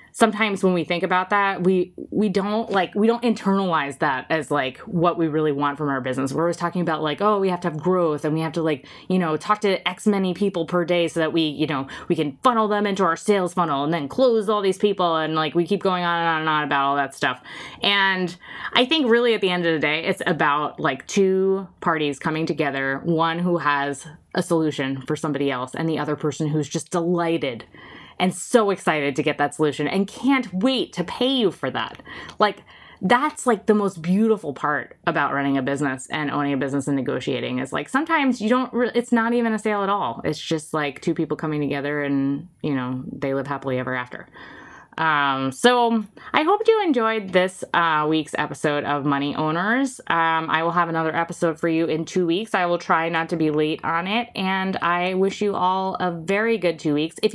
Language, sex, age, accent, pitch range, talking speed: English, female, 20-39, American, 150-205 Hz, 225 wpm